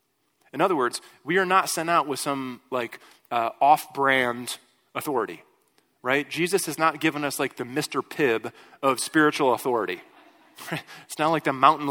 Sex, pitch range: male, 130-160 Hz